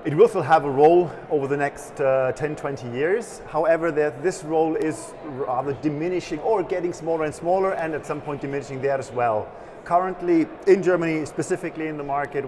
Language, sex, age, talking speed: English, male, 30-49, 190 wpm